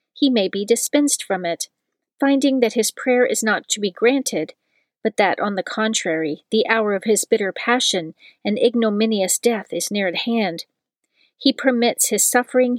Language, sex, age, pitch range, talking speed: English, female, 40-59, 200-245 Hz, 175 wpm